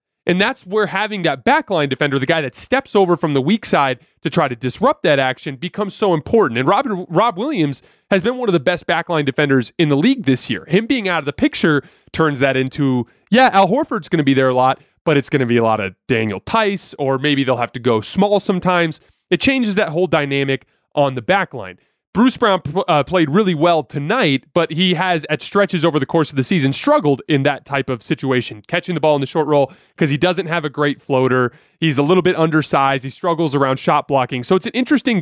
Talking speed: 235 wpm